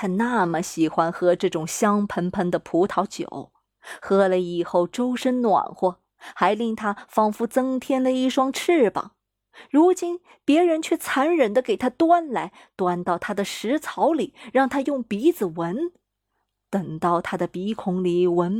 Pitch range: 185-280 Hz